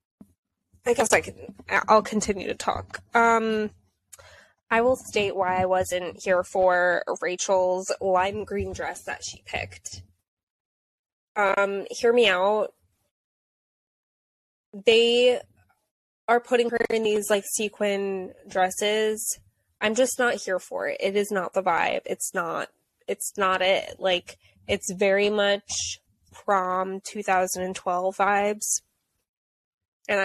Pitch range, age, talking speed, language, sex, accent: 180-215 Hz, 10-29, 120 wpm, English, female, American